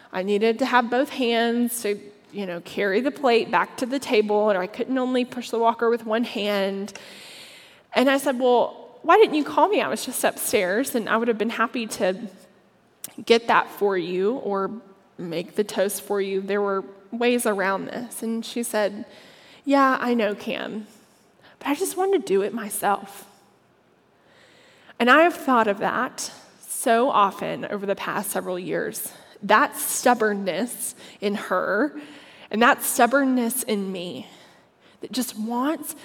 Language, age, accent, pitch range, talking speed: English, 20-39, American, 200-245 Hz, 170 wpm